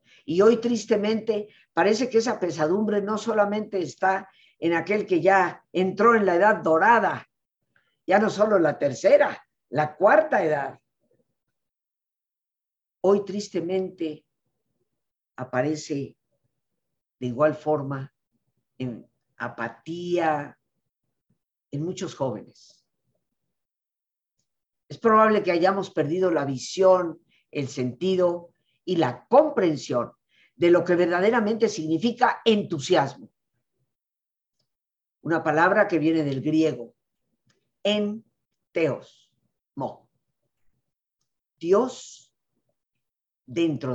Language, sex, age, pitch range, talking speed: Spanish, female, 50-69, 145-205 Hz, 95 wpm